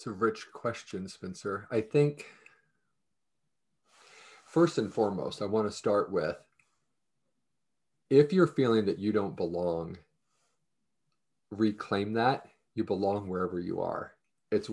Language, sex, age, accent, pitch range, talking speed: English, male, 40-59, American, 100-135 Hz, 120 wpm